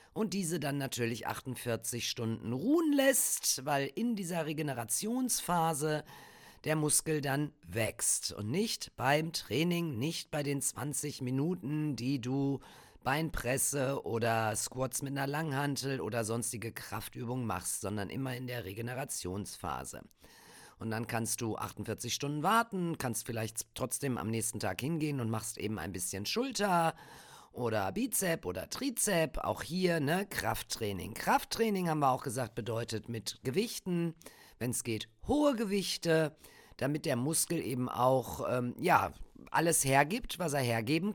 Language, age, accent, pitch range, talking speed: German, 50-69, German, 120-165 Hz, 140 wpm